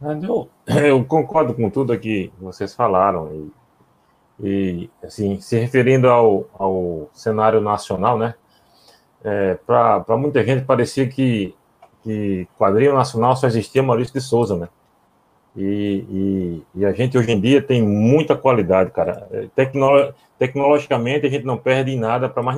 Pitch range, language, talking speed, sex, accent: 110-140 Hz, Portuguese, 145 wpm, male, Brazilian